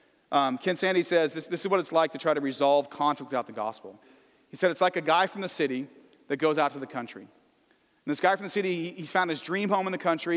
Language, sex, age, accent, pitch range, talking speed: English, male, 40-59, American, 150-185 Hz, 270 wpm